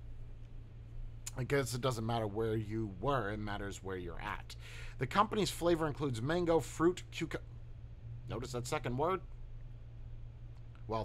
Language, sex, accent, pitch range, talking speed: English, male, American, 115-145 Hz, 135 wpm